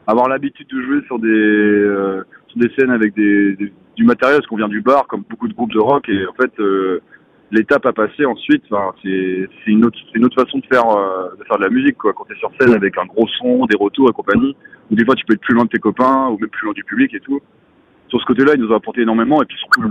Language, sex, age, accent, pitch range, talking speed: French, male, 30-49, French, 105-135 Hz, 290 wpm